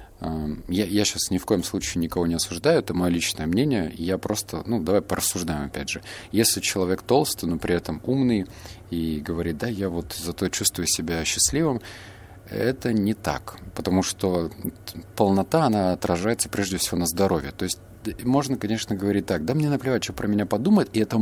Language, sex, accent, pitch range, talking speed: Russian, male, native, 85-110 Hz, 180 wpm